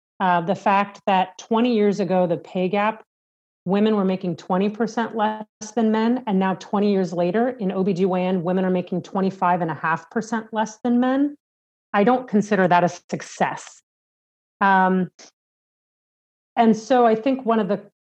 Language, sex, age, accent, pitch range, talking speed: English, female, 40-59, American, 185-230 Hz, 150 wpm